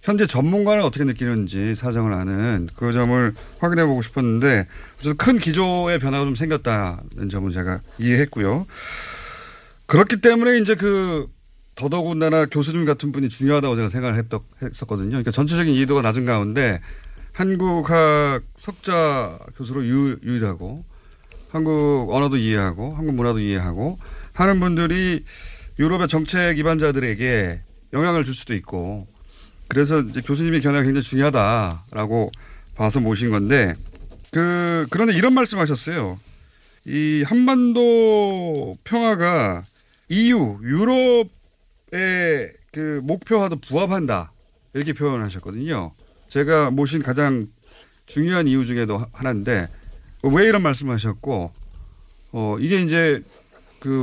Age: 40-59